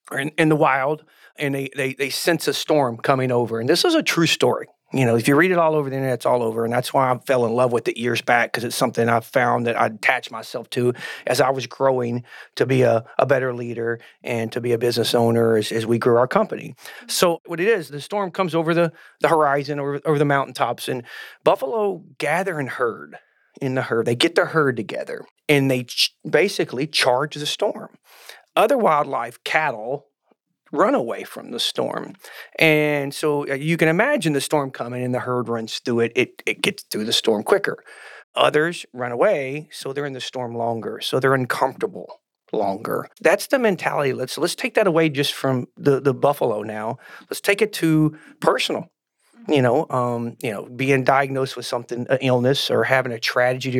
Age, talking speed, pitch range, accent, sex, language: 40-59, 205 wpm, 125-155 Hz, American, male, English